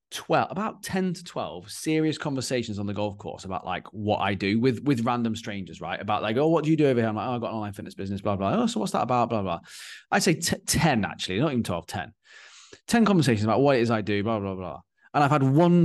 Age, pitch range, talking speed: 20-39, 100-135 Hz, 280 wpm